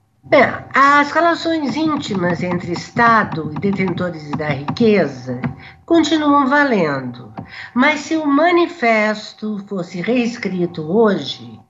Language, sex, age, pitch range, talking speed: Portuguese, female, 60-79, 185-265 Hz, 95 wpm